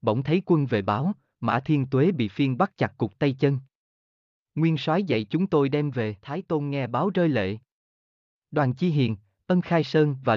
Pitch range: 110-160 Hz